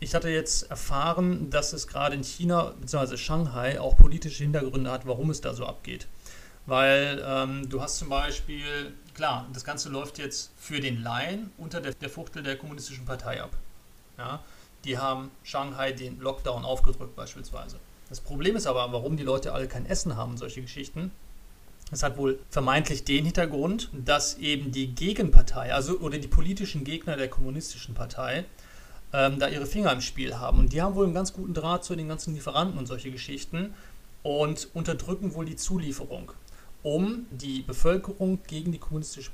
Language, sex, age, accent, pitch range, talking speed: German, male, 40-59, German, 130-160 Hz, 170 wpm